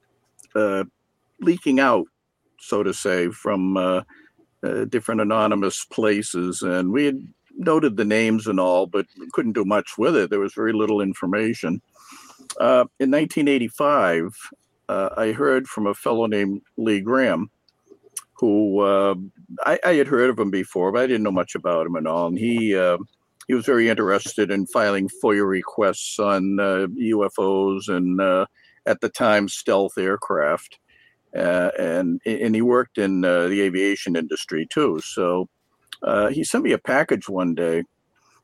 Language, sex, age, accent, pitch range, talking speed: English, male, 50-69, American, 95-120 Hz, 160 wpm